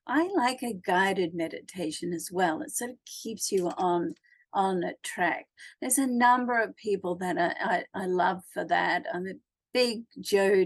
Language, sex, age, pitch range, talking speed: English, female, 50-69, 185-250 Hz, 180 wpm